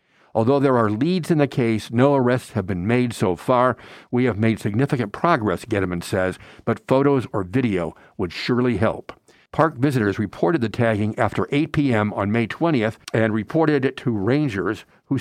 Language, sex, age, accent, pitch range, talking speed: English, male, 60-79, American, 105-140 Hz, 180 wpm